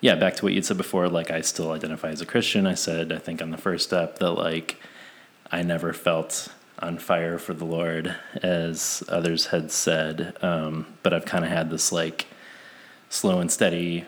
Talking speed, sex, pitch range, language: 200 wpm, male, 80-95 Hz, English